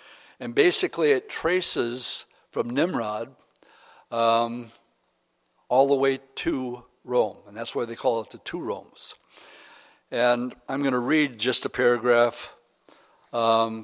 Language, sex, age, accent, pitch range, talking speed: English, male, 60-79, American, 120-155 Hz, 130 wpm